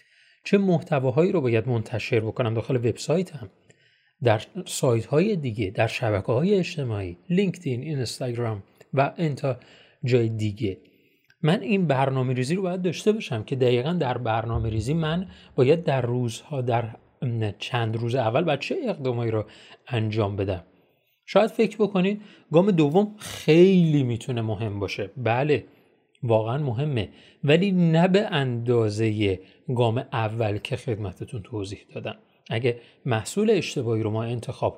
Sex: male